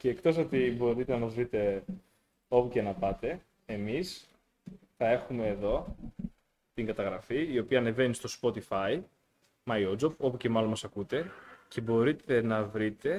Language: Greek